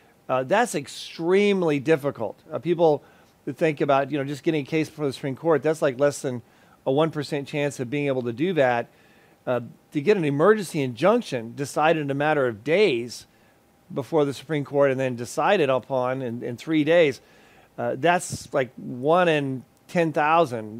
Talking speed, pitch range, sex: 180 wpm, 130-160 Hz, male